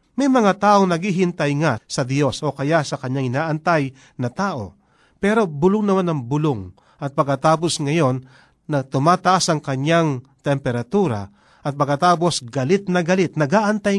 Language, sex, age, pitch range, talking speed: Filipino, male, 40-59, 135-180 Hz, 140 wpm